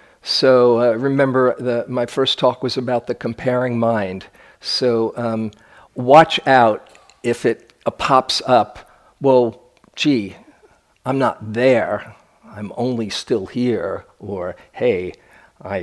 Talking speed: 125 wpm